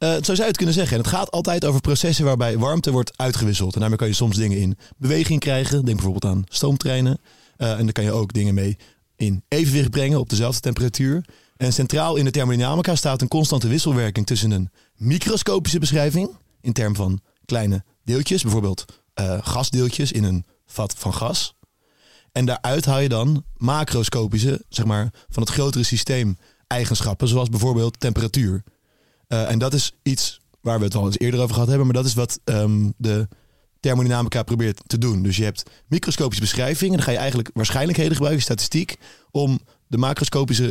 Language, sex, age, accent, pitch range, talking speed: Dutch, male, 30-49, Dutch, 110-140 Hz, 185 wpm